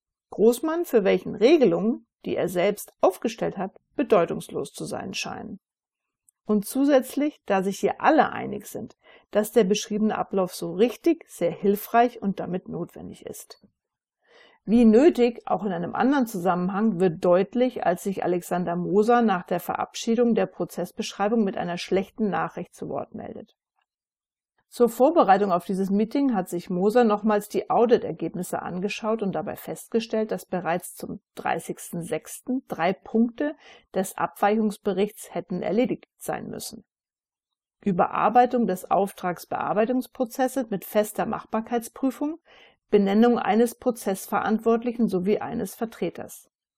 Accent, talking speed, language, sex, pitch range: German, 125 wpm, German, female, 190-240 Hz